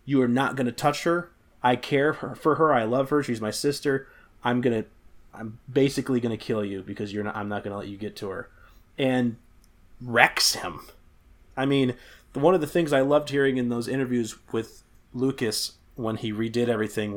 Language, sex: English, male